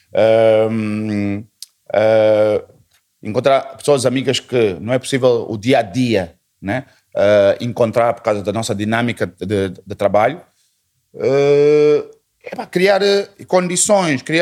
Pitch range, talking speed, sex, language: 115-145 Hz, 95 wpm, male, Portuguese